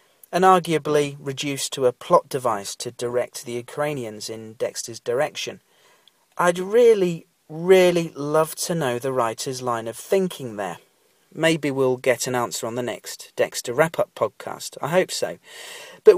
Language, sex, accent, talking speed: English, male, British, 150 wpm